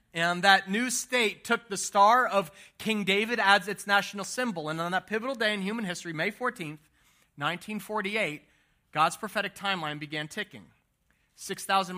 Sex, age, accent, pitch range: male, 40-59, American, 155-200 Hz